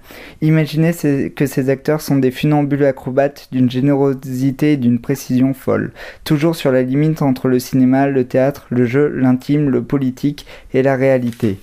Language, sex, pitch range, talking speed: French, male, 130-145 Hz, 160 wpm